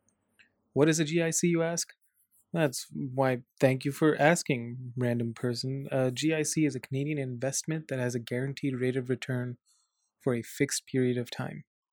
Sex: male